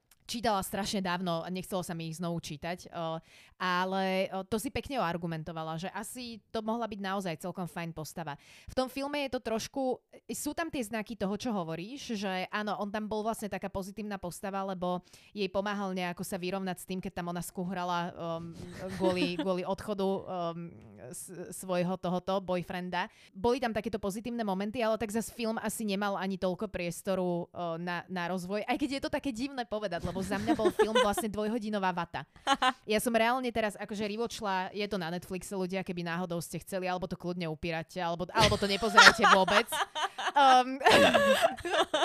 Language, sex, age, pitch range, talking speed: Slovak, female, 20-39, 180-240 Hz, 180 wpm